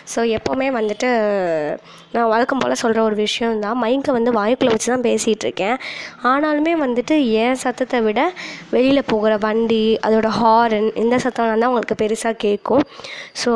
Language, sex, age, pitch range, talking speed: Tamil, female, 20-39, 215-265 Hz, 135 wpm